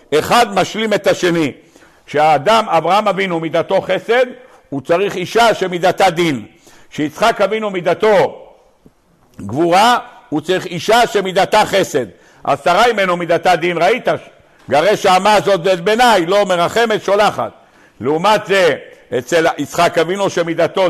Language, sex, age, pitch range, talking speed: Hebrew, male, 60-79, 175-220 Hz, 120 wpm